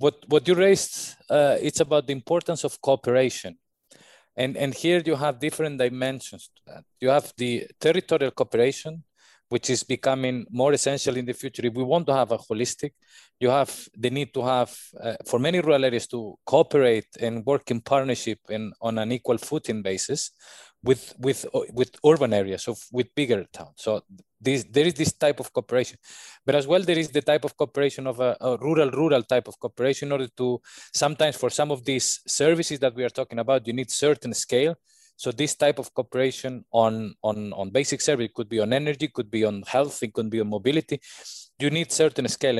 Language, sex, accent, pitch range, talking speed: English, male, Spanish, 120-150 Hz, 200 wpm